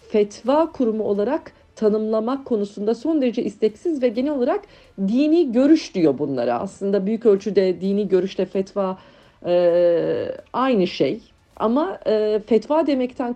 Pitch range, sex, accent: 190-275 Hz, female, native